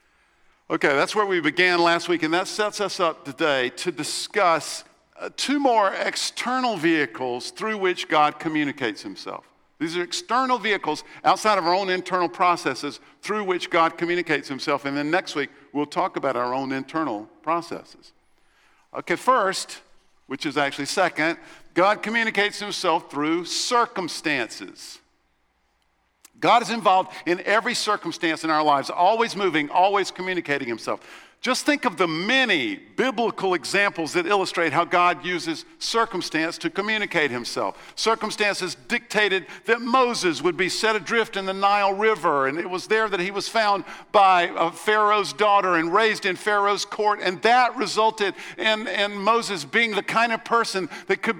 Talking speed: 155 wpm